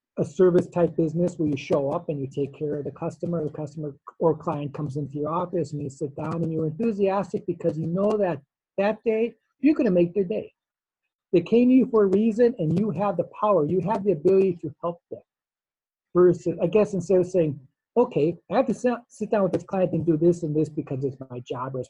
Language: English